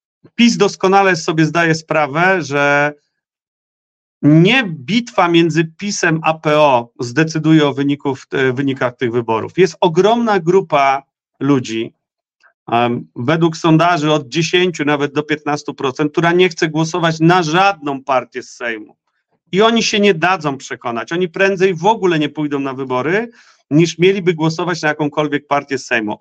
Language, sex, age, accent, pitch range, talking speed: Polish, male, 40-59, native, 150-195 Hz, 140 wpm